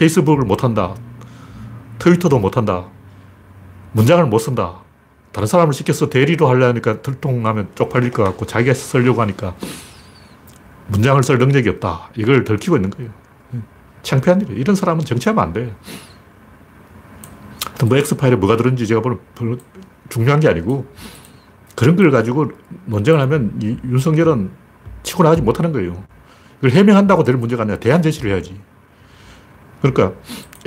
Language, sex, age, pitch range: Korean, male, 40-59, 110-165 Hz